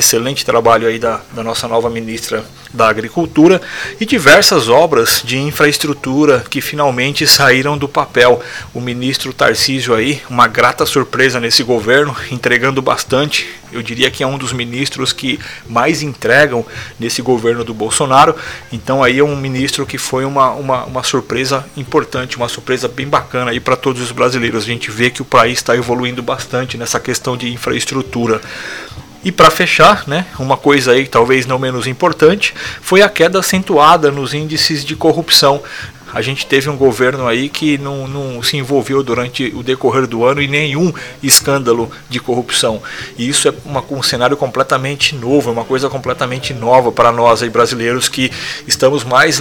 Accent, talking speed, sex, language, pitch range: Brazilian, 165 wpm, male, Portuguese, 120-145 Hz